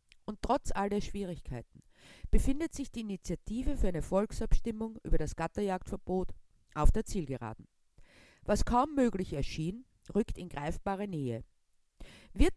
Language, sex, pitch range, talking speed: German, female, 165-235 Hz, 130 wpm